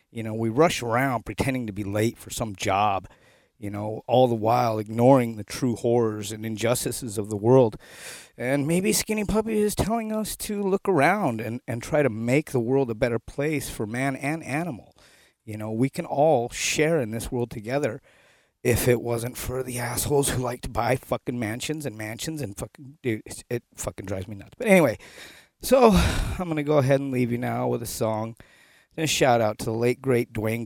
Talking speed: 205 wpm